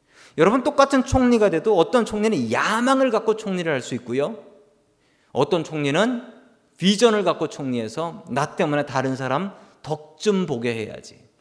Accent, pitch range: native, 145-215 Hz